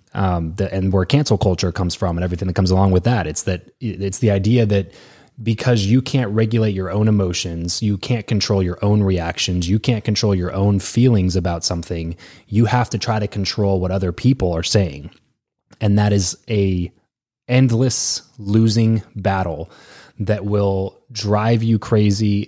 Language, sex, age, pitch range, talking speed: English, male, 20-39, 95-110 Hz, 185 wpm